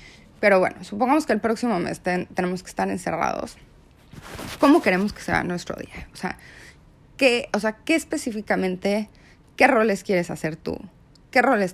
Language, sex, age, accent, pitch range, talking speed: English, female, 30-49, Mexican, 175-225 Hz, 165 wpm